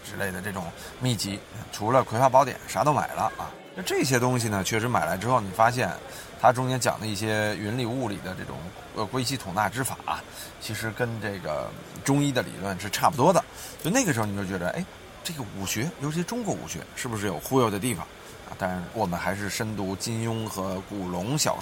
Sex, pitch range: male, 105-135 Hz